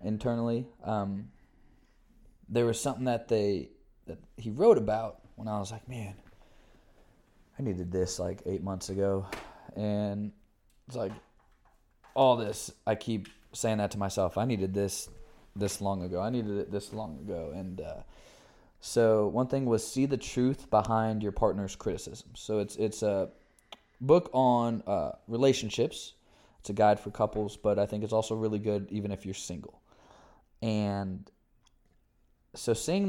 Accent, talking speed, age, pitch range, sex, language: American, 155 wpm, 20-39, 100-120 Hz, male, English